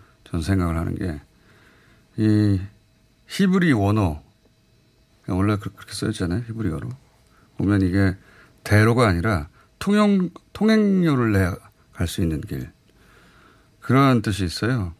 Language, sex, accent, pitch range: Korean, male, native, 95-125 Hz